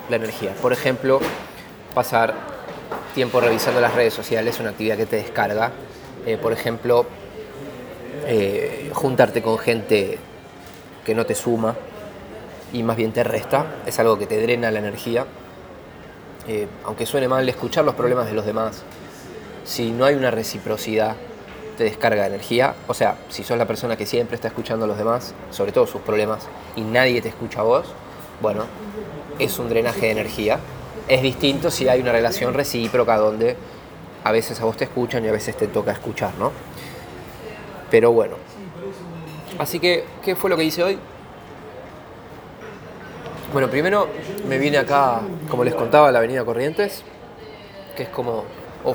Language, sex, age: Spanish, male, 20-39